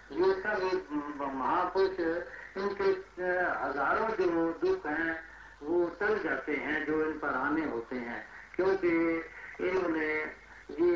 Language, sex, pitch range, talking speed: Hindi, male, 150-190 Hz, 115 wpm